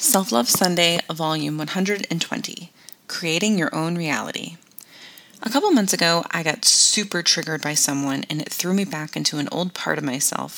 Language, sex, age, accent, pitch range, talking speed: English, female, 20-39, American, 155-205 Hz, 170 wpm